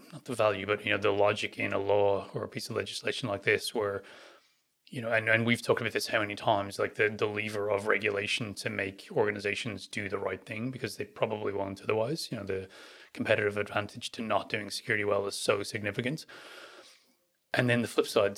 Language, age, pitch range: English, 30-49, 100-120 Hz